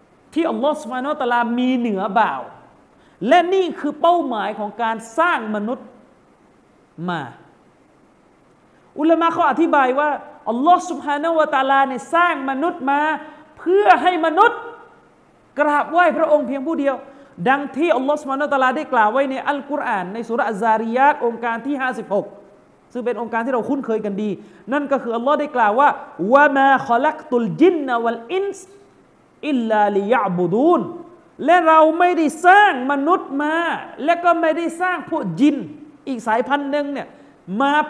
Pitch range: 245-320 Hz